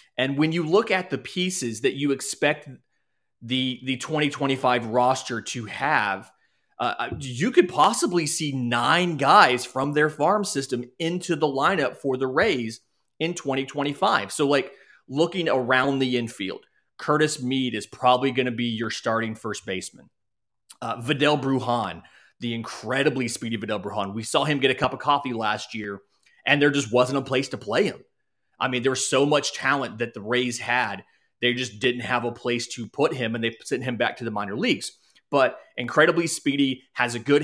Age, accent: 30-49, American